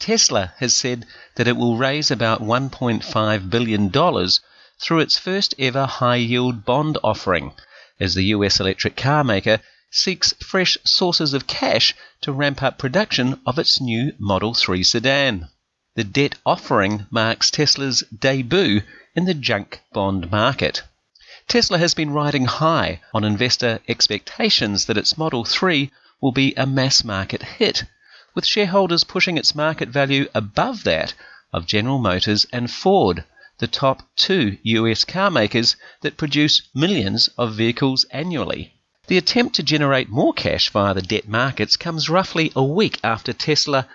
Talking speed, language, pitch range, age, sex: 150 wpm, English, 110-155 Hz, 40-59, male